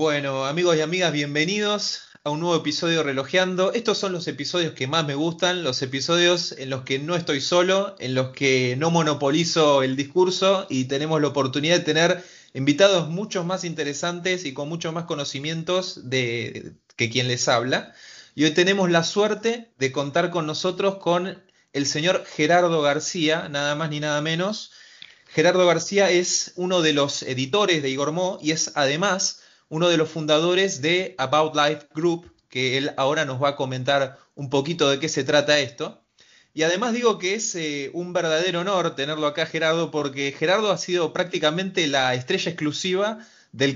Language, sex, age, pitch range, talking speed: Spanish, male, 20-39, 140-180 Hz, 175 wpm